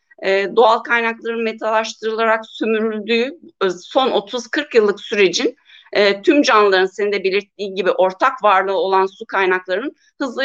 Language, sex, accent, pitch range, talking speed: Turkish, female, native, 195-260 Hz, 120 wpm